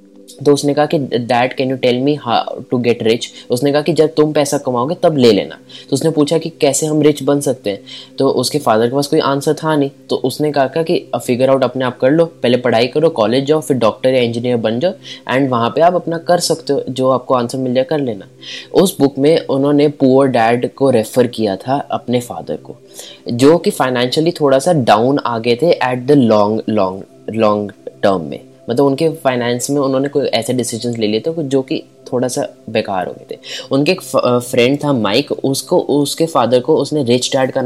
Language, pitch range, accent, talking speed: English, 120-150 Hz, Indian, 190 wpm